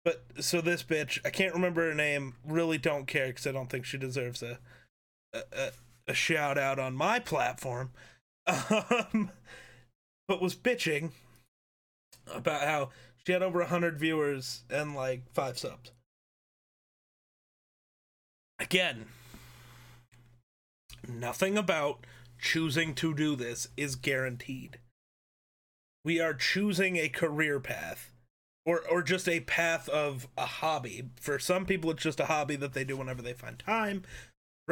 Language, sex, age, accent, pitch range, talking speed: English, male, 30-49, American, 125-175 Hz, 135 wpm